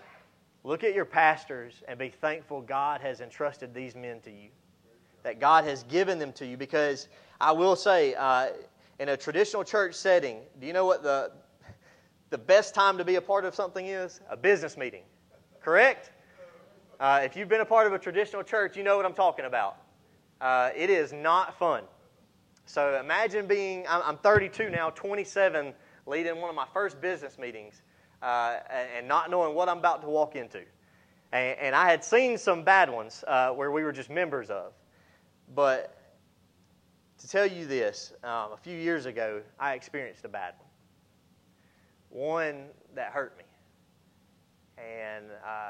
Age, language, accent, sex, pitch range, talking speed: 30-49, English, American, male, 135-190 Hz, 170 wpm